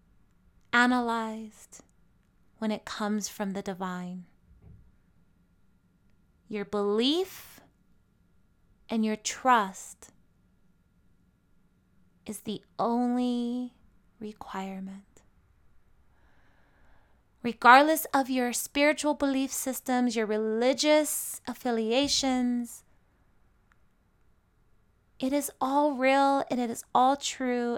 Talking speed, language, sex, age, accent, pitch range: 75 wpm, English, female, 20-39, American, 200-260 Hz